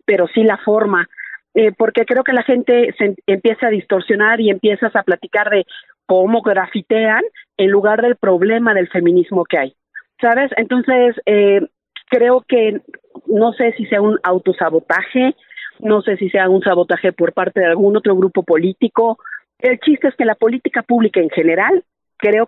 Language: Spanish